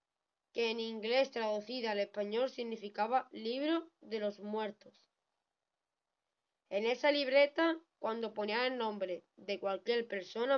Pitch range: 220-275 Hz